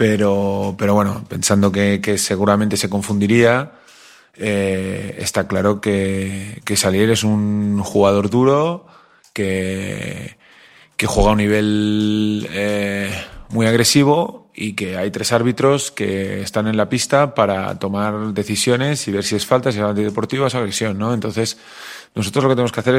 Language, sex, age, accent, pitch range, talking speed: Spanish, male, 30-49, Spanish, 105-115 Hz, 155 wpm